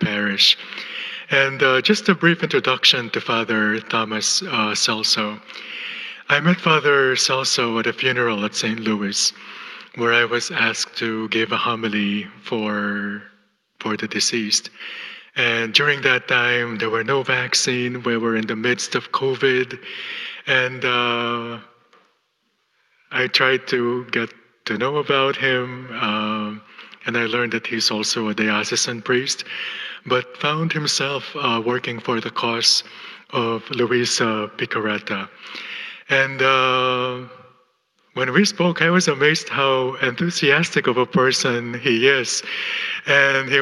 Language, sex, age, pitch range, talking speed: English, male, 20-39, 115-155 Hz, 135 wpm